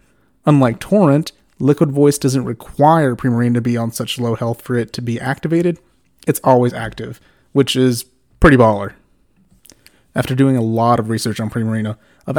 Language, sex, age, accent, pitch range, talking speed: English, male, 30-49, American, 120-145 Hz, 165 wpm